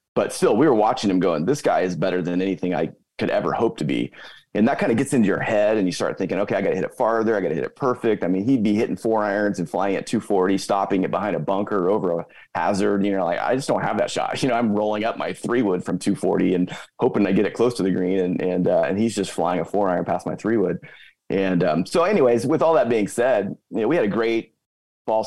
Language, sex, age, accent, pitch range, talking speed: English, male, 30-49, American, 90-105 Hz, 285 wpm